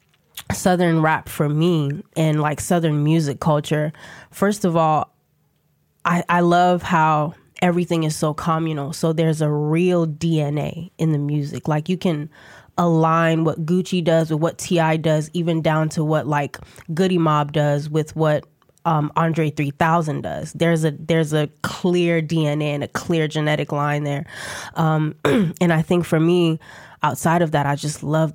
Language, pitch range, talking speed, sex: English, 150-165 Hz, 165 wpm, female